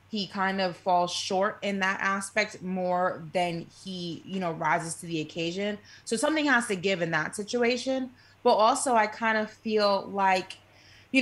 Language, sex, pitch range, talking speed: English, female, 180-220 Hz, 175 wpm